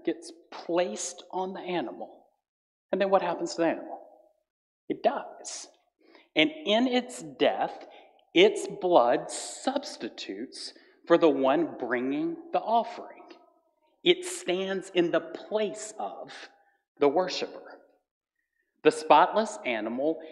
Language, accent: English, American